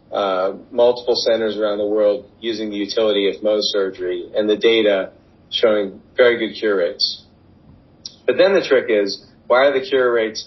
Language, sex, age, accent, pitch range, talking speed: English, male, 40-59, American, 105-140 Hz, 170 wpm